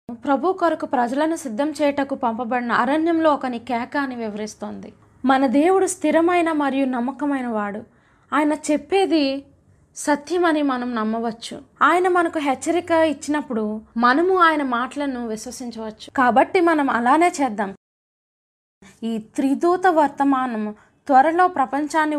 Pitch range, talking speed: 235-300 Hz, 105 wpm